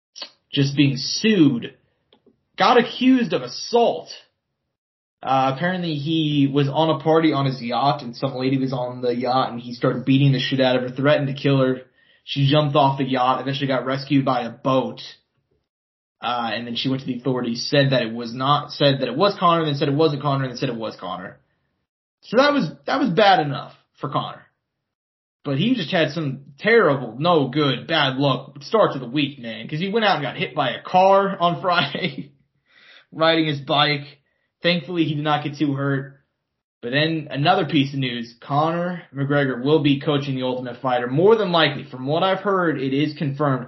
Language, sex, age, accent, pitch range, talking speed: English, male, 20-39, American, 130-155 Hz, 200 wpm